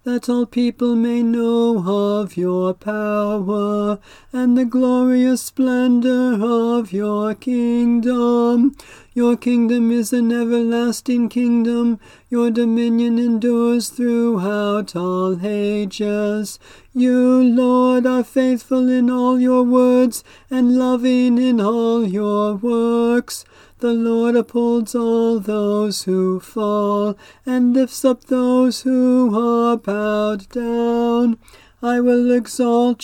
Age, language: 40-59, English